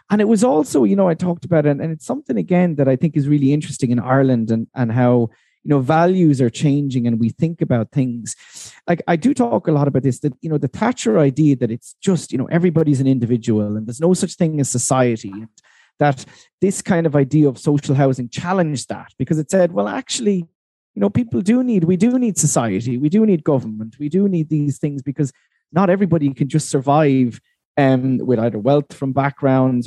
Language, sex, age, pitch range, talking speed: English, male, 30-49, 135-180 Hz, 220 wpm